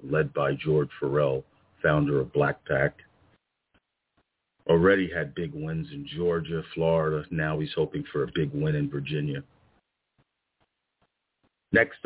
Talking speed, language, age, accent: 125 wpm, English, 50-69, American